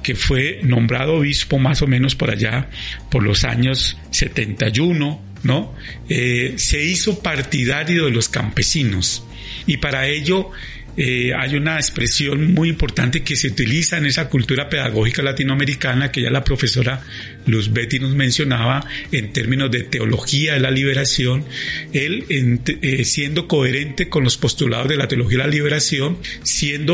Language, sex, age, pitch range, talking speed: Spanish, male, 40-59, 125-155 Hz, 150 wpm